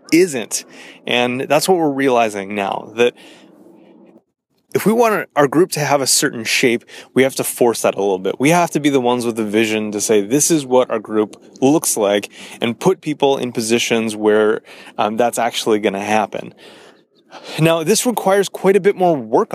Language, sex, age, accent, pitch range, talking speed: English, male, 30-49, American, 115-150 Hz, 195 wpm